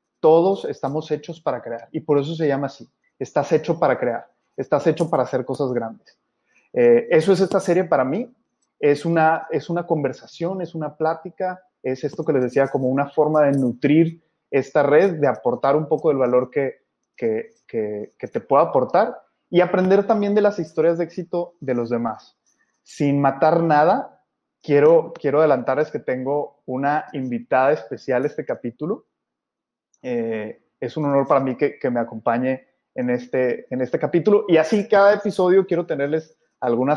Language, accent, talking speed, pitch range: Spanish, Mexican, 175 wpm, 140-205 Hz